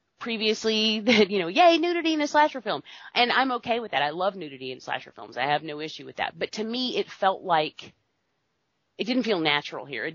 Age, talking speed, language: 30-49, 230 wpm, English